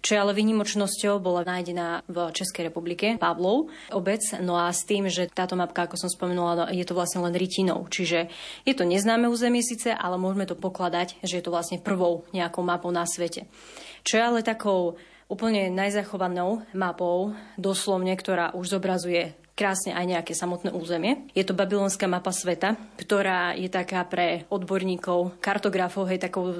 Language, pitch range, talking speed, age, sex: Slovak, 180-200 Hz, 165 wpm, 20-39, female